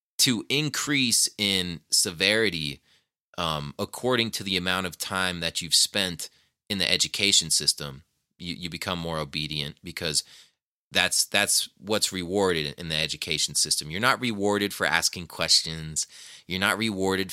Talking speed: 140 wpm